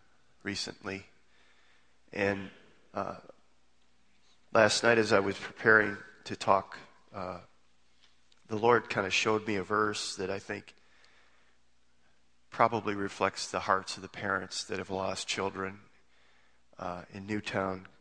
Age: 40-59